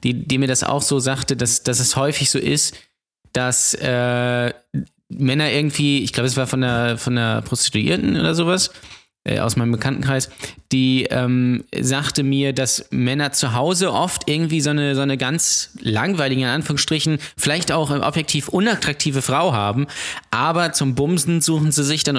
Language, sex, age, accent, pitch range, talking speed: German, male, 20-39, German, 125-150 Hz, 170 wpm